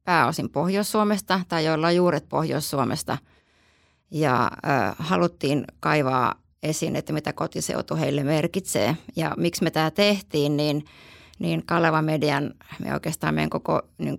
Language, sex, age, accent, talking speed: Finnish, female, 30-49, native, 130 wpm